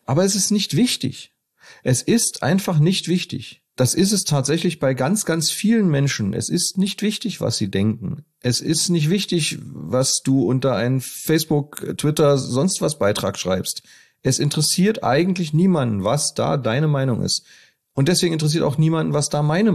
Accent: German